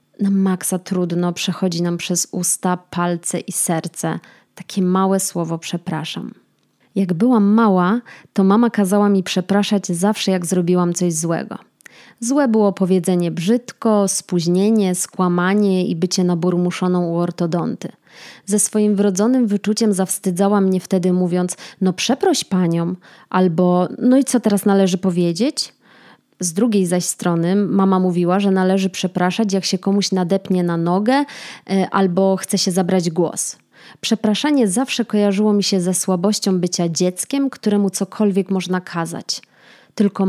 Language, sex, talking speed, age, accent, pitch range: Polish, female, 135 wpm, 20-39, native, 180-205 Hz